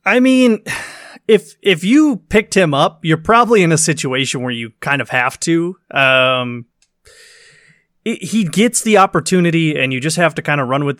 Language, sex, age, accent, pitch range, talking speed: English, male, 20-39, American, 135-180 Hz, 185 wpm